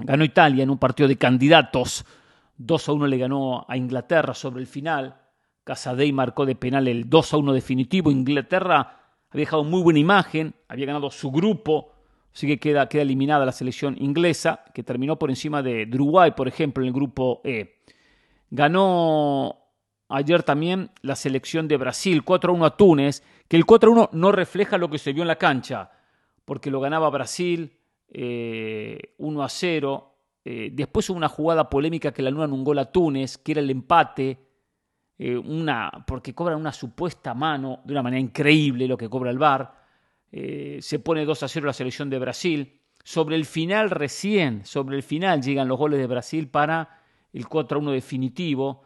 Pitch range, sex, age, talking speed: 130-160 Hz, male, 40-59, 185 wpm